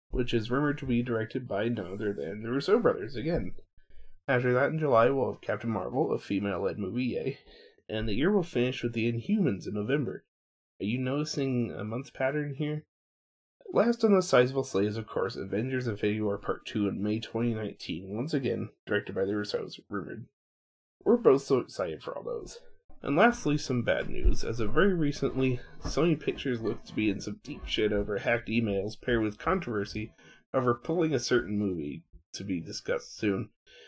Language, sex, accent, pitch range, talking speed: English, male, American, 105-130 Hz, 185 wpm